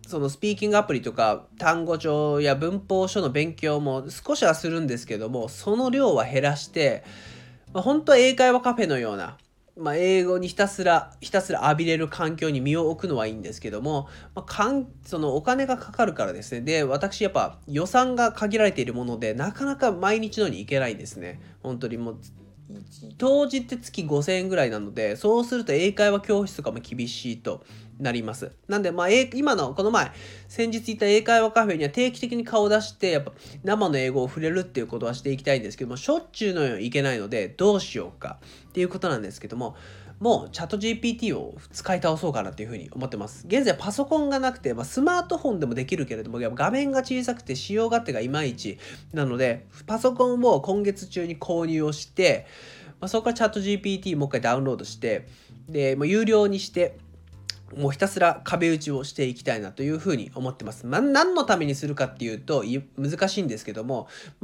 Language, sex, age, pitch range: Japanese, male, 20-39, 130-205 Hz